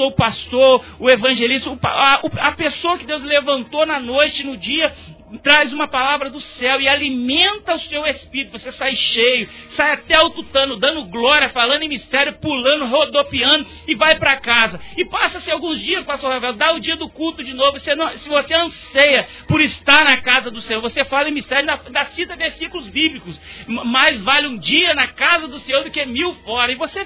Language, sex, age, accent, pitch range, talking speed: Portuguese, male, 40-59, Brazilian, 265-315 Hz, 195 wpm